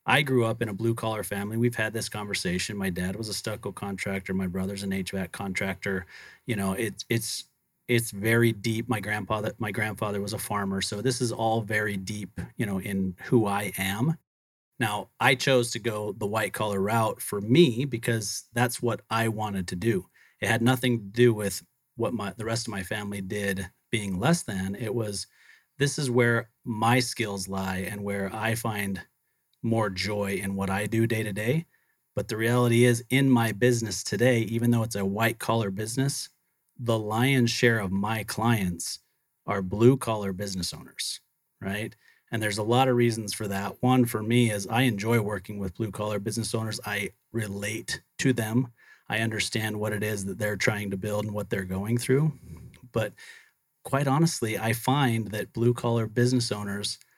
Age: 30-49